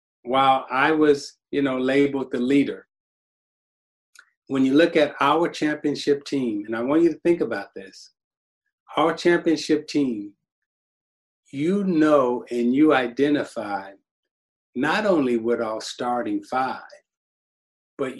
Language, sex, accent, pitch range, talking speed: English, male, American, 125-165 Hz, 125 wpm